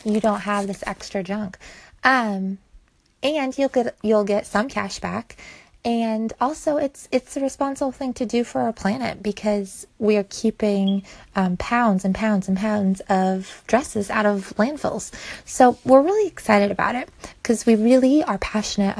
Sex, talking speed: female, 165 wpm